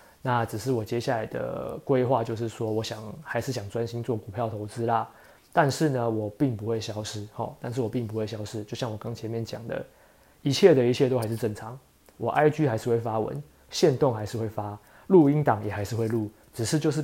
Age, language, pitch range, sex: 20-39, Chinese, 110-135 Hz, male